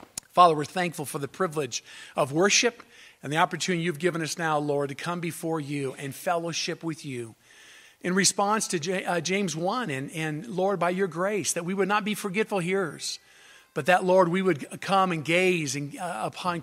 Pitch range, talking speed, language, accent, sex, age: 155-195 Hz, 190 wpm, English, American, male, 50-69